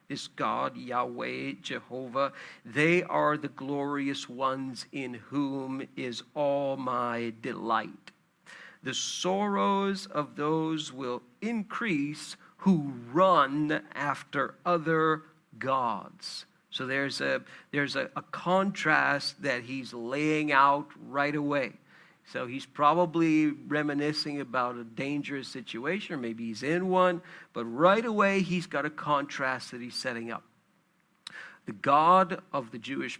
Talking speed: 125 wpm